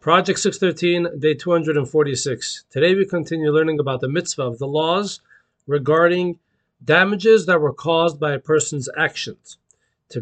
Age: 40-59